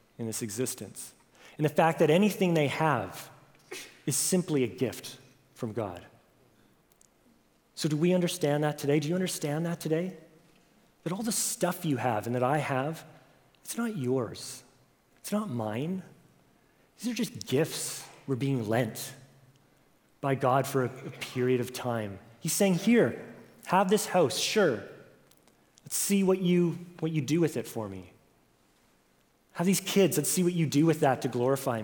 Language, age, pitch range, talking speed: English, 30-49, 120-160 Hz, 165 wpm